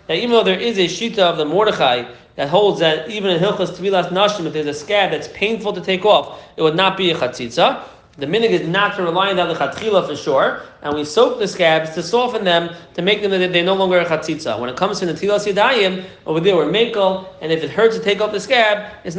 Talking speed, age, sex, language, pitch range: 255 wpm, 30-49, male, English, 165-210 Hz